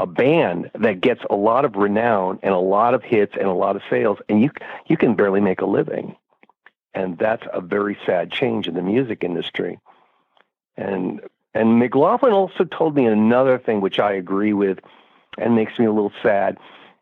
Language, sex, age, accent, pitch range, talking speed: English, male, 50-69, American, 100-140 Hz, 190 wpm